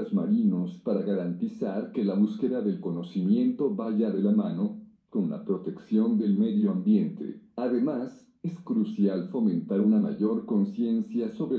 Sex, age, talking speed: male, 50-69, 135 wpm